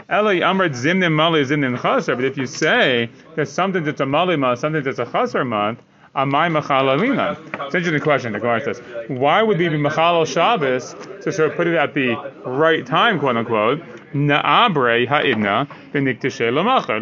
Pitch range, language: 140-175 Hz, English